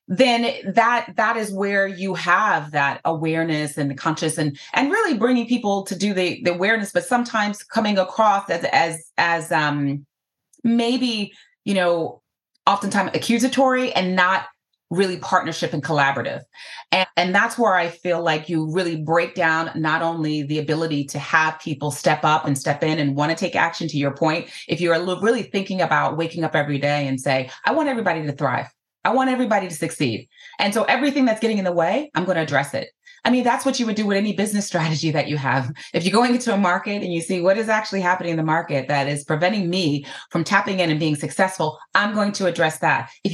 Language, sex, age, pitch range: English, female, 30-49, 150-200 Hz